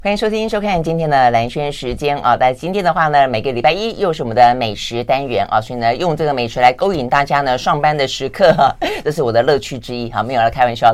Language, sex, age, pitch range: Chinese, female, 30-49, 125-175 Hz